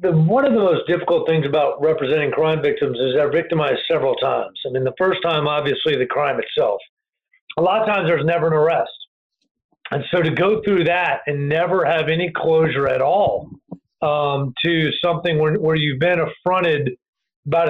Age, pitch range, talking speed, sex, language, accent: 40-59, 155-220 Hz, 185 wpm, male, English, American